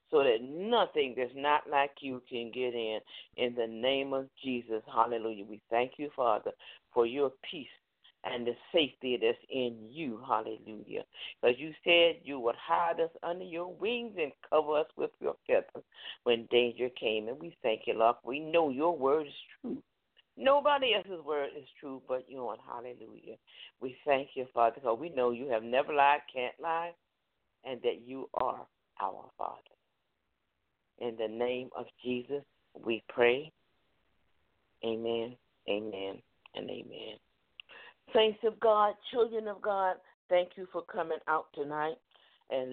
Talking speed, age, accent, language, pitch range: 160 wpm, 50-69, American, English, 120-165 Hz